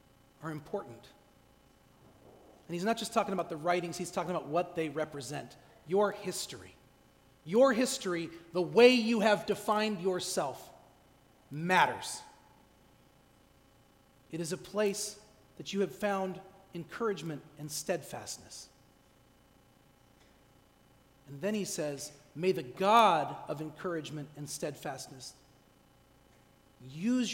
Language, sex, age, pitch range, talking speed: English, male, 40-59, 160-225 Hz, 110 wpm